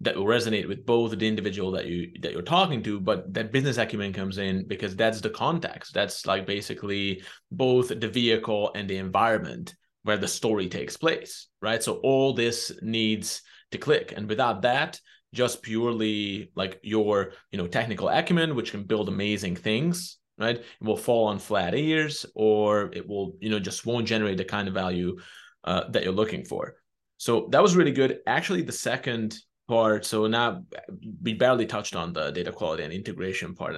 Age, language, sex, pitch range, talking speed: 20-39, English, male, 100-120 Hz, 185 wpm